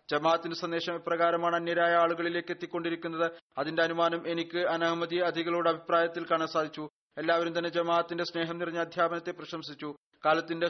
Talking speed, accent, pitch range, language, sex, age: 125 wpm, native, 165-170 Hz, Malayalam, male, 30-49